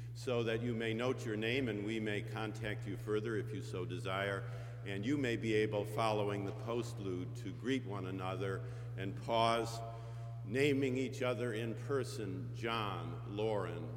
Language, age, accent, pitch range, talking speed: English, 50-69, American, 110-125 Hz, 165 wpm